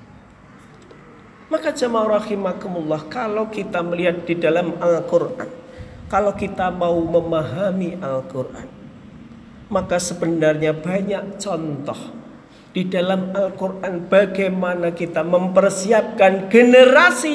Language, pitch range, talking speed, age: Indonesian, 175-215 Hz, 85 wpm, 50-69